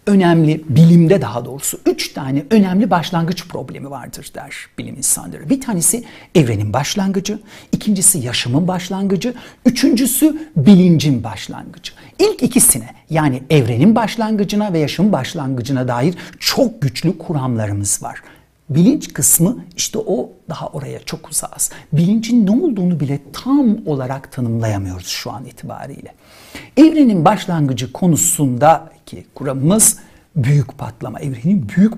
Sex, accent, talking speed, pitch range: male, native, 120 wpm, 140-215 Hz